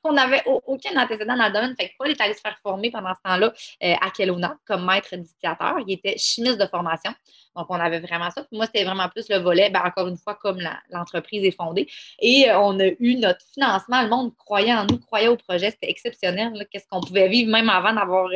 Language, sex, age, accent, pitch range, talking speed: French, female, 20-39, Canadian, 180-235 Hz, 245 wpm